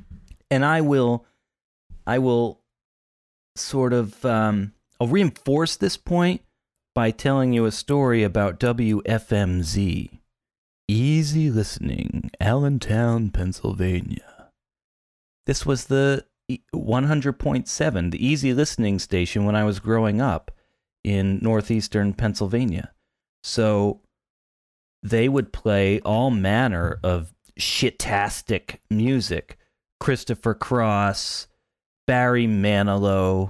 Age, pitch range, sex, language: 30-49, 100-130 Hz, male, English